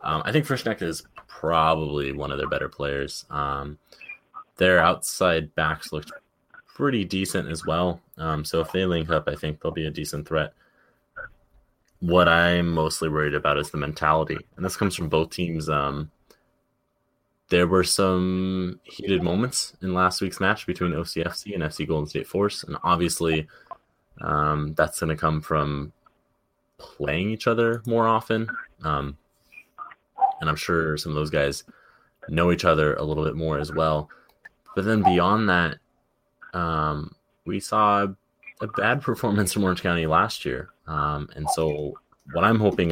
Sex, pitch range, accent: male, 75-95 Hz, American